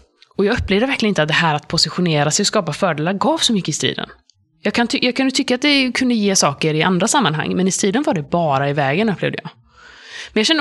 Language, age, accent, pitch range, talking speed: Swedish, 20-39, native, 160-205 Hz, 250 wpm